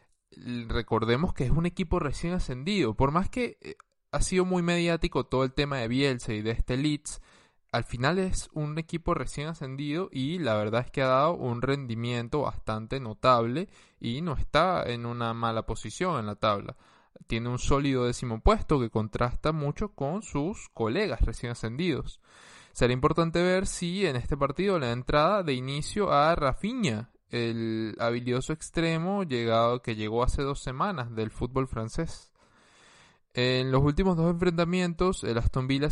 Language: Spanish